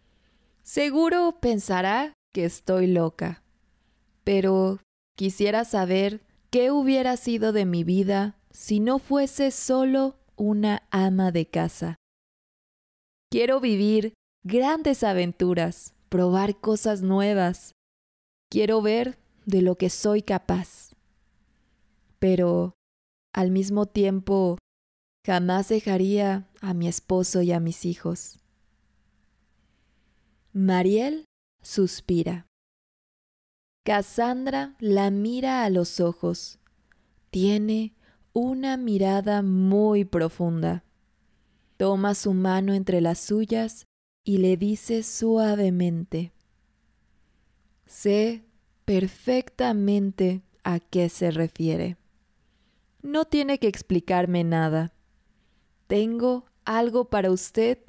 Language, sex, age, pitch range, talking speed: Spanish, female, 20-39, 180-220 Hz, 90 wpm